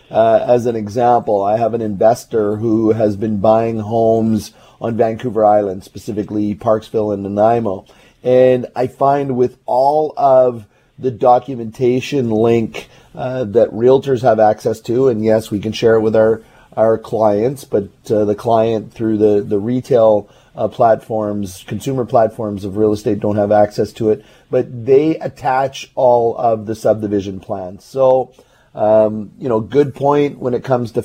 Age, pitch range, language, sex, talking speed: 30-49, 110-130 Hz, English, male, 160 wpm